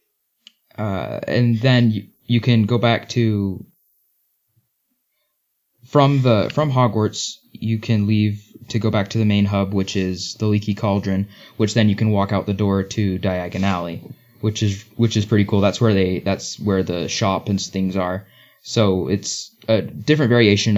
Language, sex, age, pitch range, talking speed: English, male, 20-39, 95-110 Hz, 175 wpm